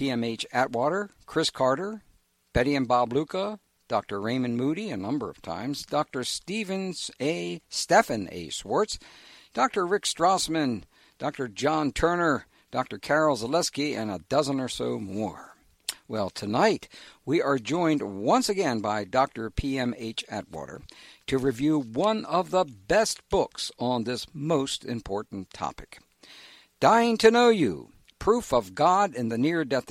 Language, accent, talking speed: English, American, 140 wpm